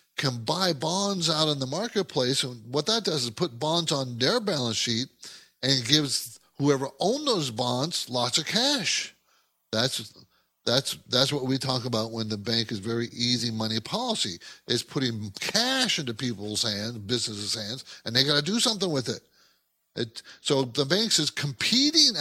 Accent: American